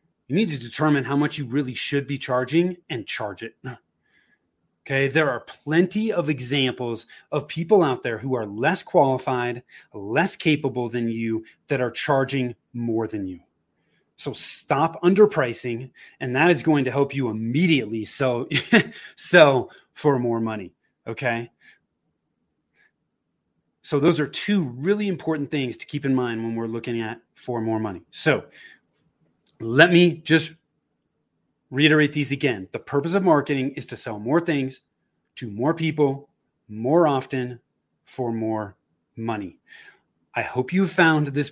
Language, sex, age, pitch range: English, male, 30-49, 115-150 Hz